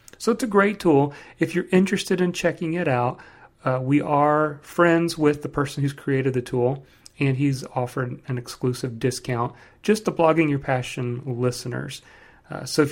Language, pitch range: English, 125-160 Hz